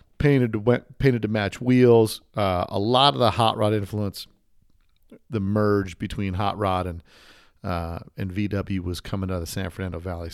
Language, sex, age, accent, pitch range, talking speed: English, male, 40-59, American, 95-110 Hz, 185 wpm